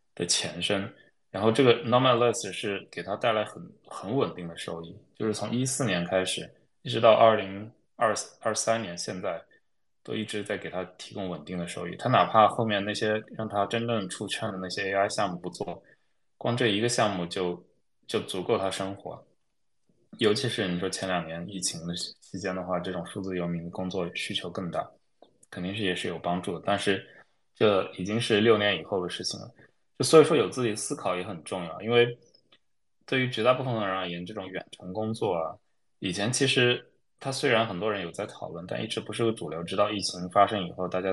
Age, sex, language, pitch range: 20-39, male, Chinese, 90-110 Hz